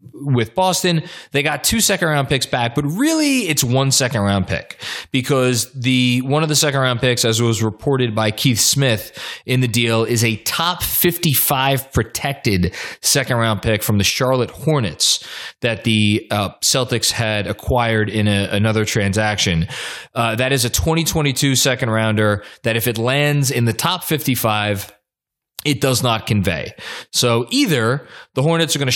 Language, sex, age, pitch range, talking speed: English, male, 20-39, 110-140 Hz, 165 wpm